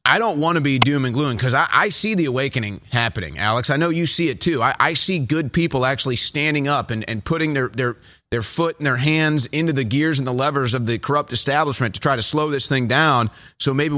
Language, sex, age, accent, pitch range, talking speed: English, male, 30-49, American, 130-170 Hz, 255 wpm